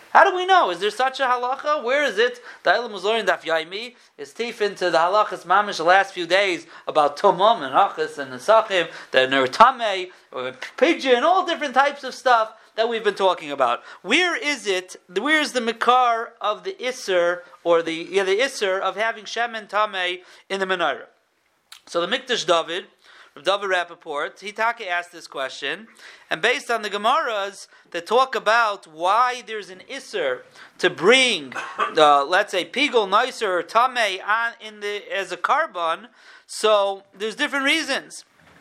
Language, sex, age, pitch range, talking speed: English, male, 40-59, 180-245 Hz, 175 wpm